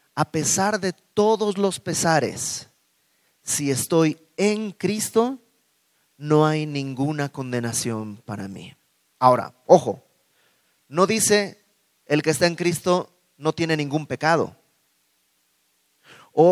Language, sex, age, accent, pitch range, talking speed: Spanish, male, 30-49, Mexican, 135-205 Hz, 110 wpm